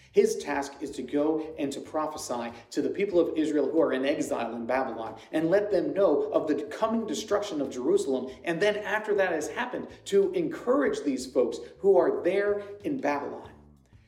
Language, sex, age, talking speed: English, male, 40-59, 190 wpm